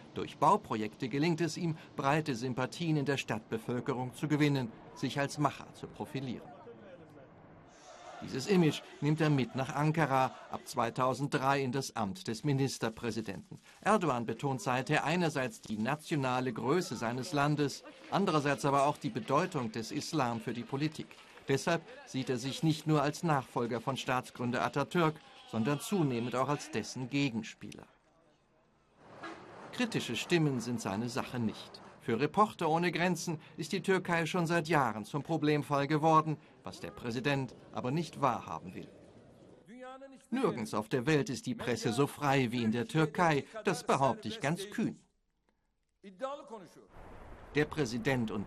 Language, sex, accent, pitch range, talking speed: German, male, German, 125-155 Hz, 140 wpm